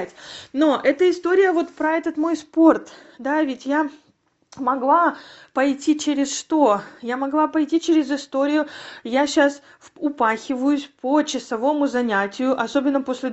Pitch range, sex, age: 250-305 Hz, female, 30-49